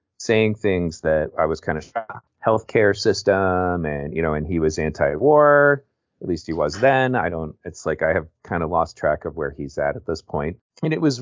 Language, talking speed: English, 225 wpm